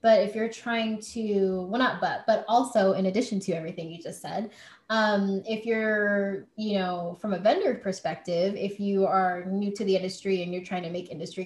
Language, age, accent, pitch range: English, 10-29, American, 190-220 Hz